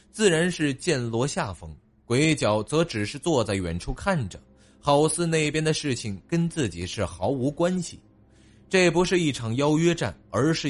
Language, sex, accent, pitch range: Chinese, male, native, 105-155 Hz